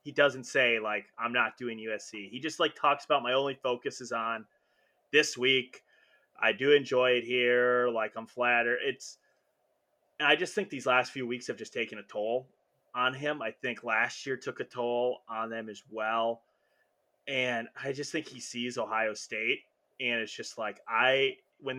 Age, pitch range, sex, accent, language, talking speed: 30-49, 120-145 Hz, male, American, English, 185 wpm